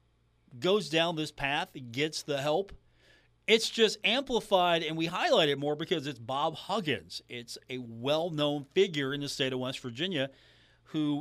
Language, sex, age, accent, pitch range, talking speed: English, male, 40-59, American, 120-175 Hz, 160 wpm